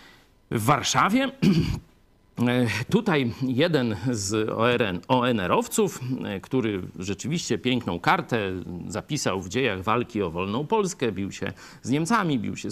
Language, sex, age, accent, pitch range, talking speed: Polish, male, 50-69, native, 110-155 Hz, 110 wpm